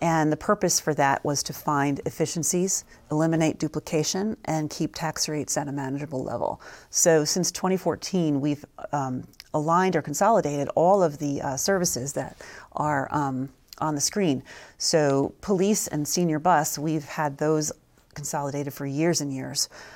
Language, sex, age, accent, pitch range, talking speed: English, female, 40-59, American, 150-170 Hz, 155 wpm